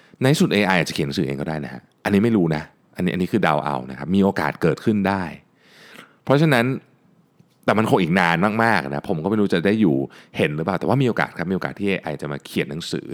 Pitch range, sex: 75-105 Hz, male